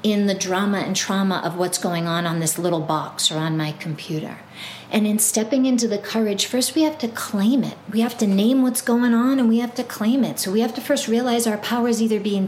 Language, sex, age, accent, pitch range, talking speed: English, female, 40-59, American, 180-225 Hz, 255 wpm